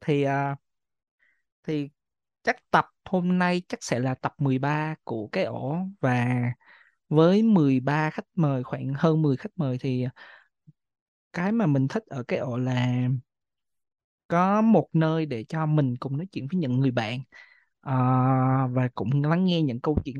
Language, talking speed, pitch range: Vietnamese, 165 wpm, 135-175 Hz